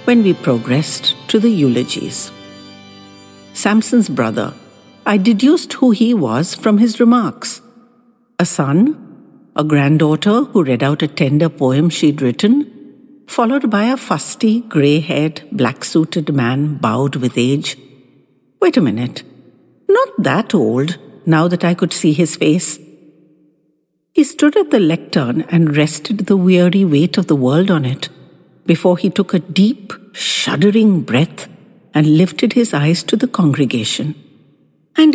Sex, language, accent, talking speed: female, English, Indian, 140 wpm